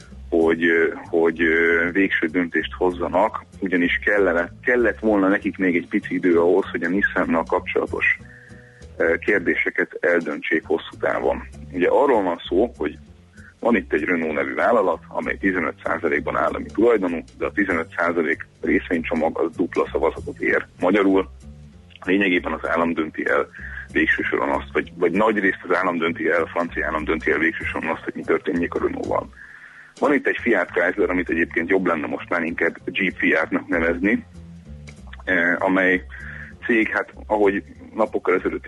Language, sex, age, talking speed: Hungarian, male, 30-49, 150 wpm